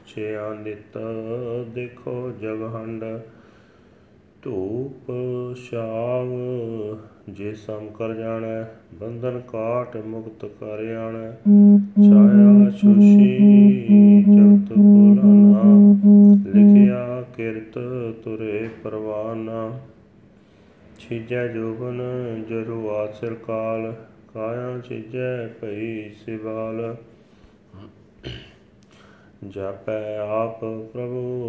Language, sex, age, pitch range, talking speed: Punjabi, male, 30-49, 110-125 Hz, 65 wpm